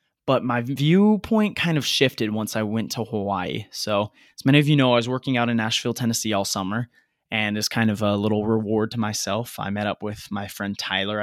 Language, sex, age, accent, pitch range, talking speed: English, male, 20-39, American, 105-125 Hz, 225 wpm